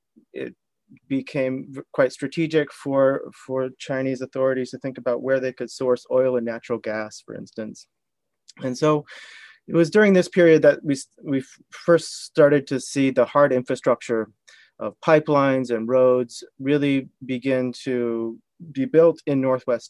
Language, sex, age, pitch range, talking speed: English, male, 30-49, 125-150 Hz, 150 wpm